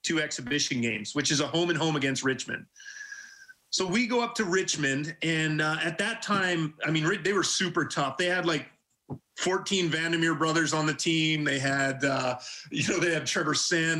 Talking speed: 195 wpm